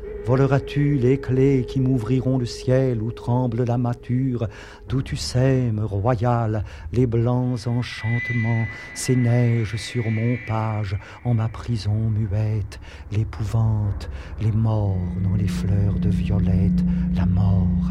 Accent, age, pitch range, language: French, 50-69, 90-110 Hz, English